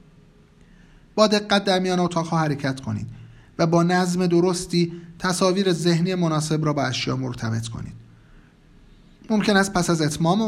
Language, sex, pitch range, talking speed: Persian, male, 135-190 Hz, 145 wpm